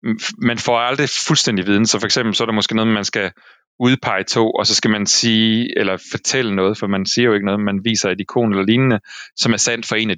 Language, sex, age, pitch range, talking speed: Danish, male, 30-49, 100-120 Hz, 255 wpm